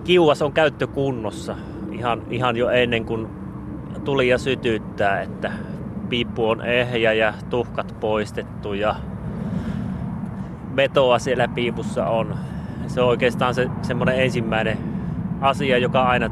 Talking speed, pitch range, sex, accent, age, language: 120 wpm, 115-140 Hz, male, native, 30-49, Finnish